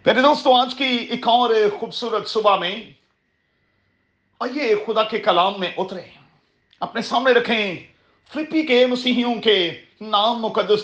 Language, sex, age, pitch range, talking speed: Urdu, male, 40-59, 175-235 Hz, 135 wpm